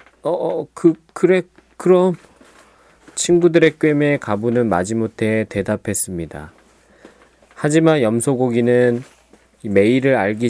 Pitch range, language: 100-140 Hz, Korean